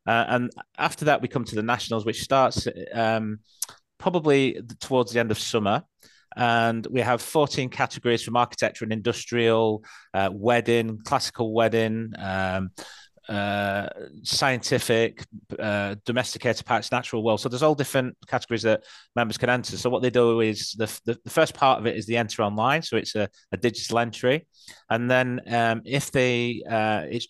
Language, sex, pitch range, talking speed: English, male, 110-125 Hz, 170 wpm